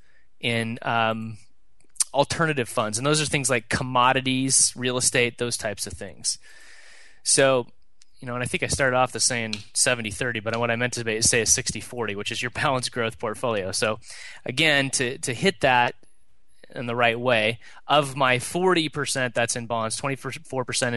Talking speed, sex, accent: 170 wpm, male, American